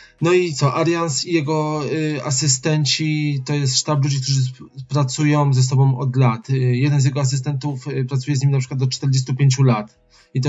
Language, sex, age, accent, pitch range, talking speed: Polish, male, 20-39, native, 125-140 Hz, 200 wpm